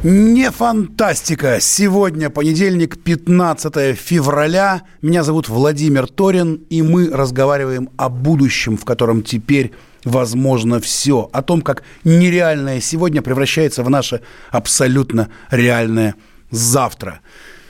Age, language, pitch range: 30-49, Russian, 125-160 Hz